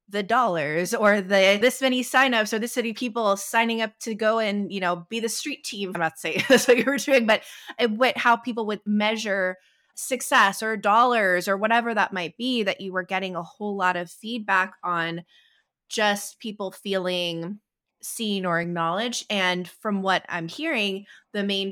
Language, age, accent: English, 20-39, American